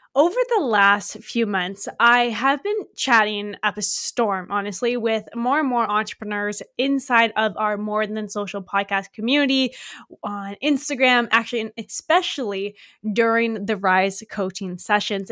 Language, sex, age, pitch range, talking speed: English, female, 10-29, 205-255 Hz, 140 wpm